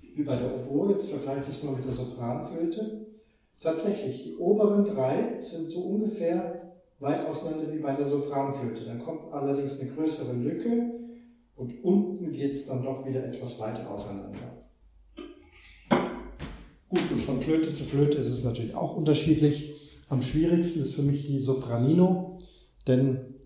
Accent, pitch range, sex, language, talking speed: German, 130-165 Hz, male, German, 155 wpm